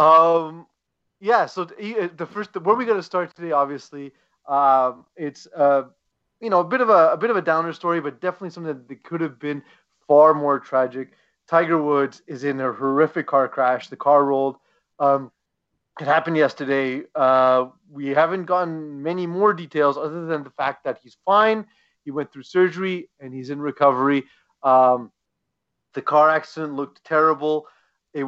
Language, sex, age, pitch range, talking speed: English, male, 30-49, 135-165 Hz, 175 wpm